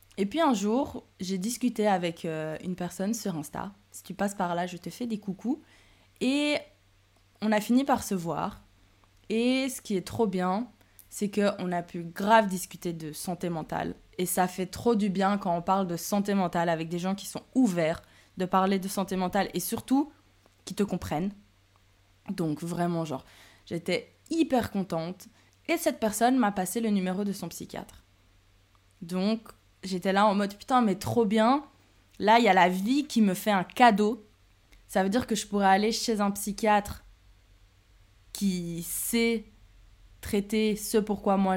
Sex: female